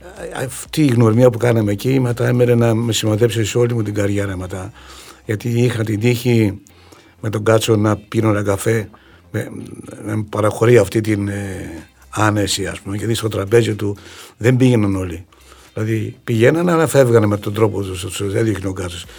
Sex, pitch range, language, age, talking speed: male, 100-120 Hz, Greek, 60-79, 180 wpm